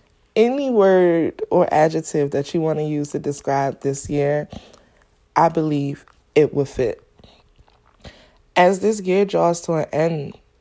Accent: American